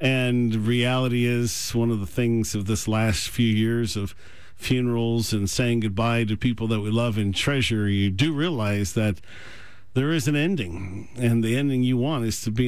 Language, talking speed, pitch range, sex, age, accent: English, 190 wpm, 110-135 Hz, male, 50-69, American